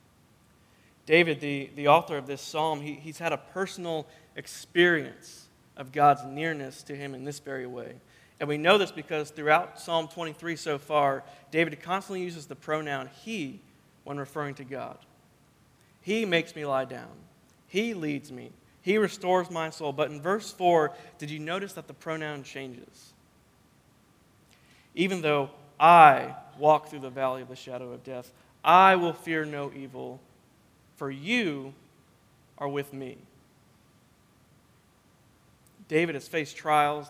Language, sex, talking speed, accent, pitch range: English, male, 145 wpm, American, 135-160 Hz